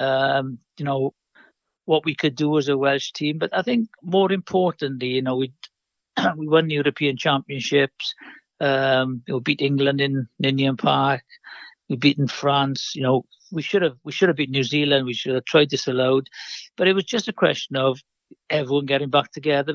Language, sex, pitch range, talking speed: English, male, 130-150 Hz, 200 wpm